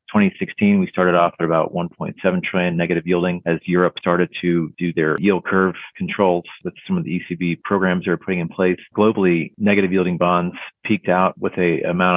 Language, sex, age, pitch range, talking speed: English, male, 40-59, 85-100 Hz, 205 wpm